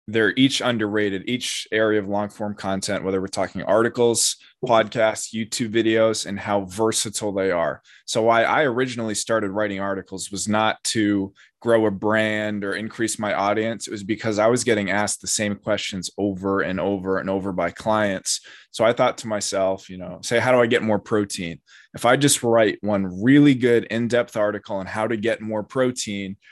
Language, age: English, 20-39